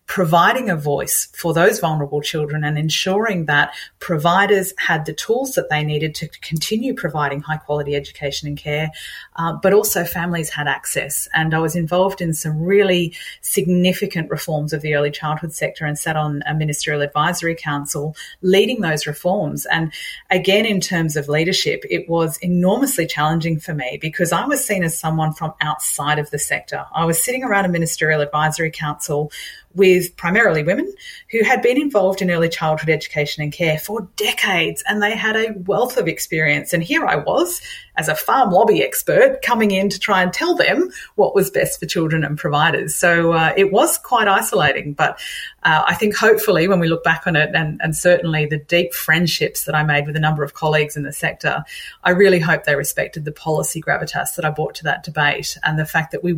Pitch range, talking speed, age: 150-190 Hz, 195 wpm, 30-49